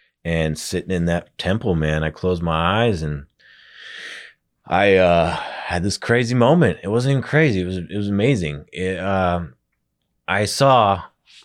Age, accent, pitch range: 30-49, American, 75-90 Hz